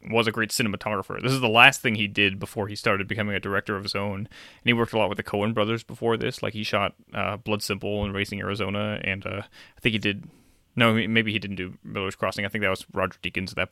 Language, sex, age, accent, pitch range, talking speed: English, male, 20-39, American, 100-115 Hz, 265 wpm